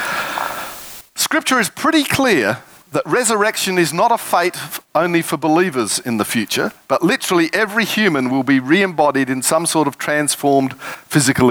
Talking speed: 150 wpm